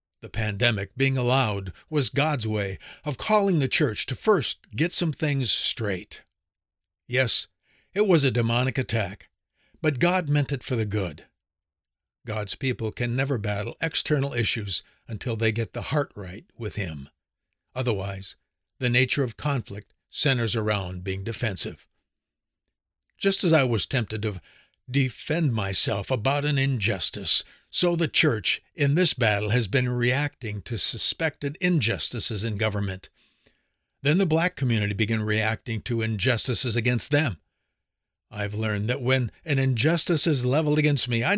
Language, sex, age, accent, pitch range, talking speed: English, male, 60-79, American, 105-140 Hz, 145 wpm